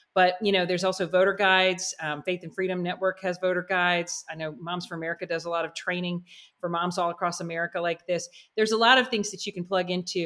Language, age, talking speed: English, 40-59, 245 wpm